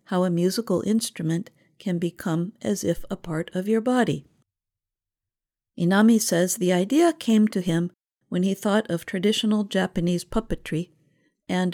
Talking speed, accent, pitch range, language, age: 145 wpm, American, 155-195 Hz, English, 50-69